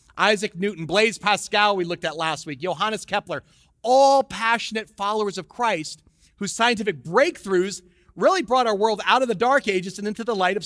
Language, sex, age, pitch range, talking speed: English, male, 30-49, 170-215 Hz, 185 wpm